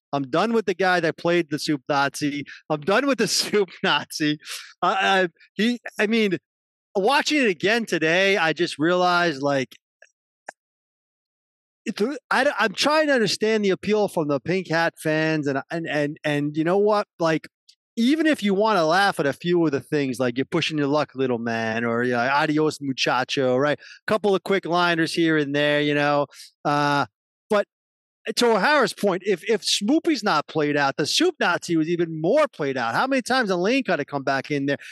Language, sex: English, male